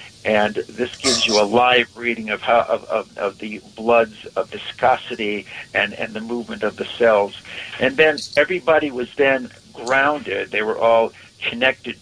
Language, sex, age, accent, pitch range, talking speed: English, male, 60-79, American, 110-135 Hz, 165 wpm